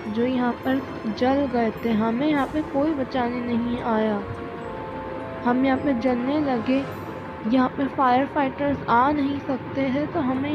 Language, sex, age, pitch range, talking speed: Urdu, female, 20-39, 240-280 Hz, 160 wpm